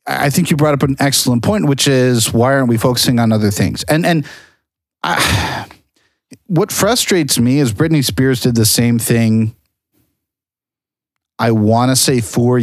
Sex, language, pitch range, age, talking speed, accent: male, English, 115-145 Hz, 40-59, 160 wpm, American